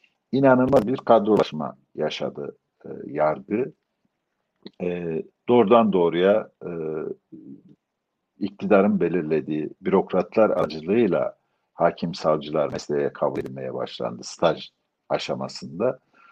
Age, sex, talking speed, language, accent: 60-79, male, 80 wpm, Turkish, native